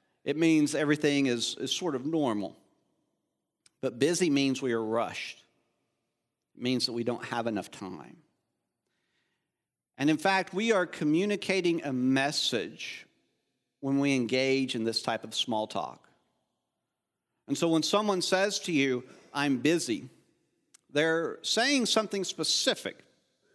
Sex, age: male, 50-69